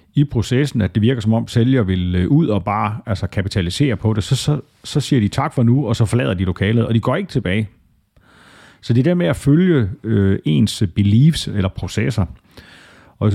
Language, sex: Danish, male